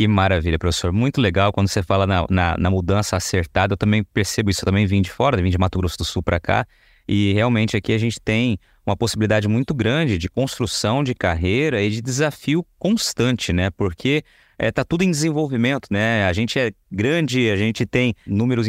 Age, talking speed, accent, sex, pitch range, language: 20-39, 205 wpm, Brazilian, male, 95-125 Hz, Portuguese